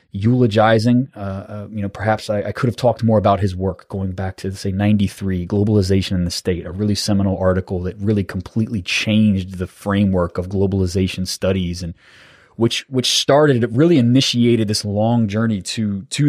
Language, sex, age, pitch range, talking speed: English, male, 20-39, 95-115 Hz, 180 wpm